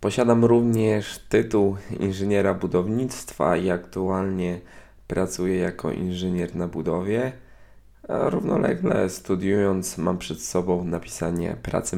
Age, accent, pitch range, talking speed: 20-39, native, 90-100 Hz, 95 wpm